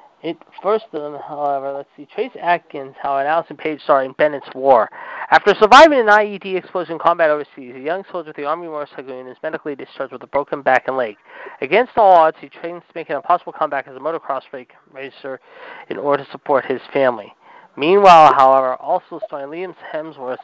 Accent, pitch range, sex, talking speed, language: American, 140-175 Hz, male, 200 wpm, English